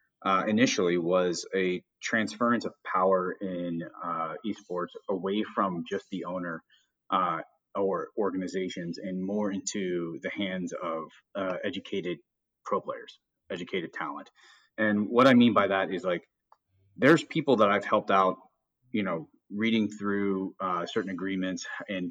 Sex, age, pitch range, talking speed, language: male, 30-49, 90-110 Hz, 140 wpm, English